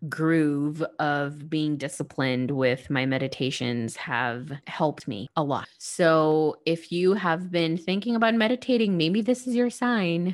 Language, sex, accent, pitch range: English, female, American, 145-175 Hz